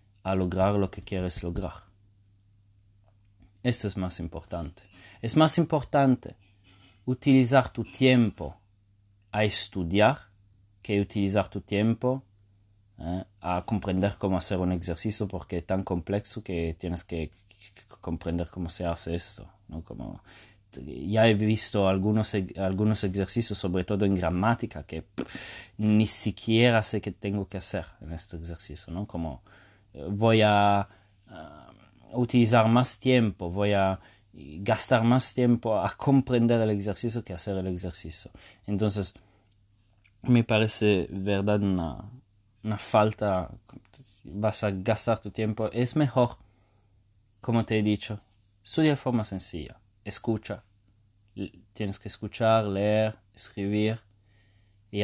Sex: male